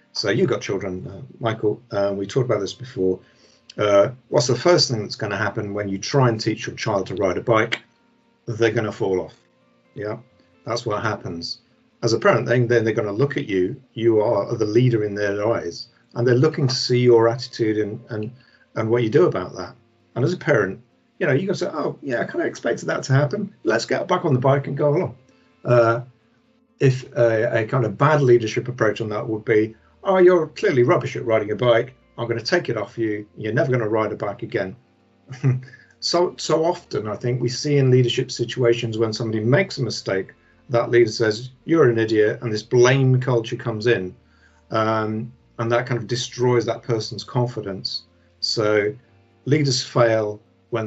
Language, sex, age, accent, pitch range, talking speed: English, male, 50-69, British, 110-125 Hz, 210 wpm